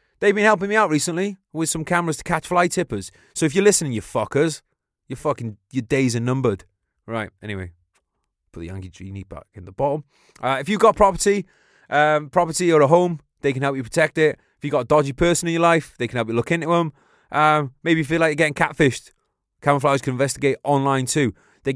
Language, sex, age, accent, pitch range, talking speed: English, male, 20-39, British, 110-155 Hz, 225 wpm